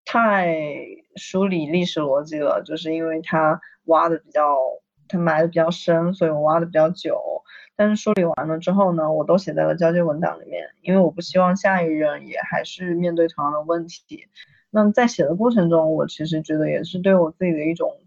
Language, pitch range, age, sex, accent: Chinese, 160-190 Hz, 20-39, female, native